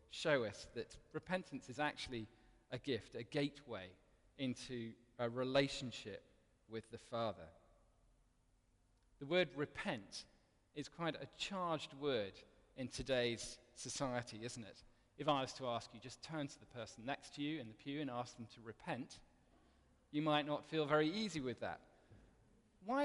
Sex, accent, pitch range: male, British, 115-150 Hz